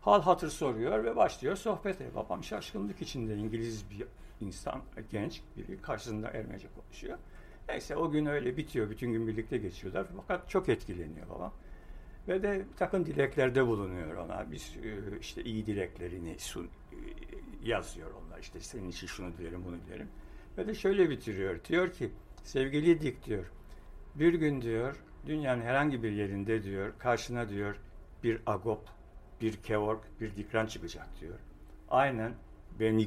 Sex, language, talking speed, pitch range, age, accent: male, Turkish, 145 wpm, 95-120 Hz, 60-79, native